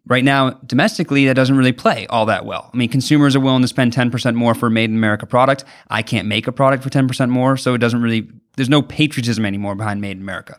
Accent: American